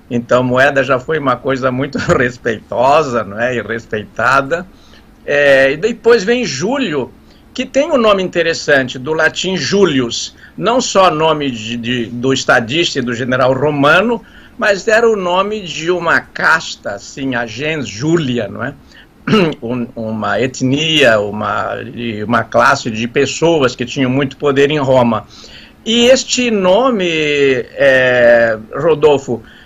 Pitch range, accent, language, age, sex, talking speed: 130-190 Hz, Brazilian, Portuguese, 60-79, male, 125 wpm